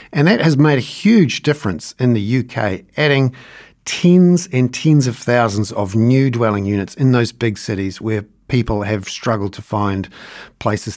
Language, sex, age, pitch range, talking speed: English, male, 50-69, 105-135 Hz, 170 wpm